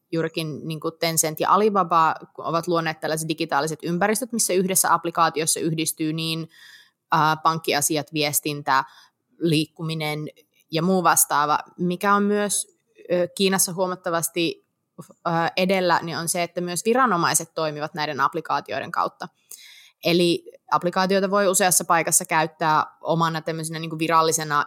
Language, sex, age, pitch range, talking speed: Finnish, female, 20-39, 155-180 Hz, 120 wpm